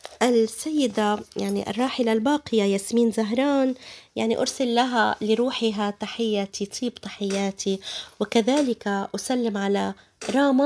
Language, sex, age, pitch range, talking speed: Arabic, female, 20-39, 200-240 Hz, 95 wpm